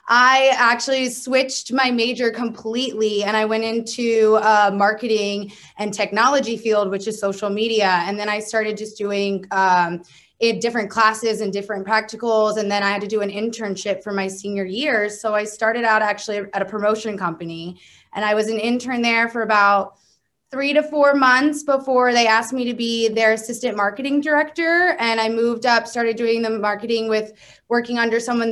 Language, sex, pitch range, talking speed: English, female, 205-240 Hz, 180 wpm